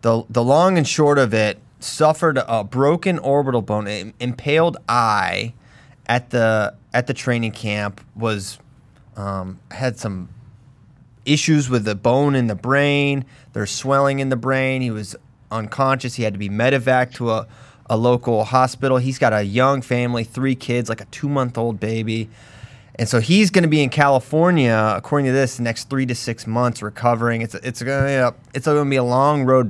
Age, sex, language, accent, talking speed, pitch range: 30-49, male, English, American, 185 wpm, 115-135 Hz